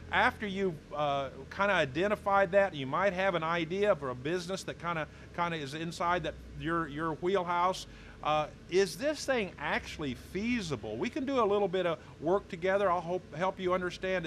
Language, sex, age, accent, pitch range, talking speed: English, male, 40-59, American, 135-185 Hz, 195 wpm